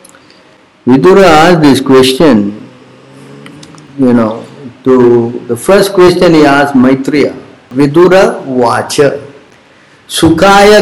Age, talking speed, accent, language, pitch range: 50-69, 90 wpm, Indian, English, 145-195 Hz